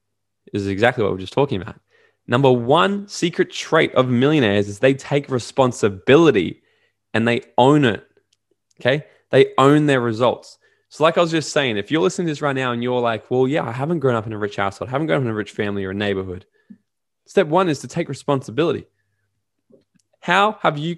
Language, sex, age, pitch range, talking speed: English, male, 20-39, 105-150 Hz, 210 wpm